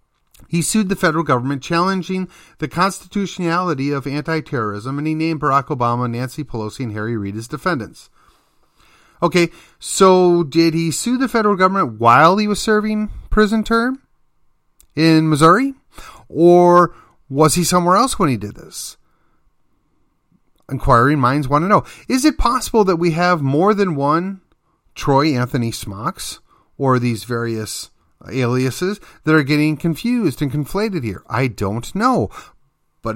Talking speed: 145 wpm